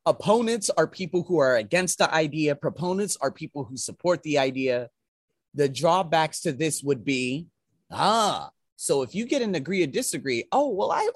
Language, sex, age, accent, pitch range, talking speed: English, male, 30-49, American, 135-205 Hz, 175 wpm